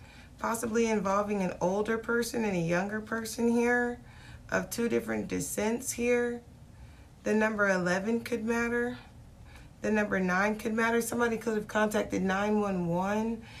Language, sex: English, female